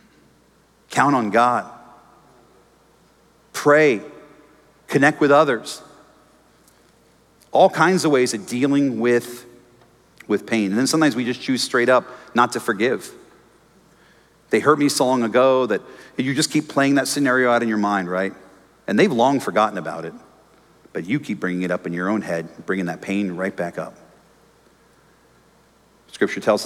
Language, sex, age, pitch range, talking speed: English, male, 40-59, 105-150 Hz, 160 wpm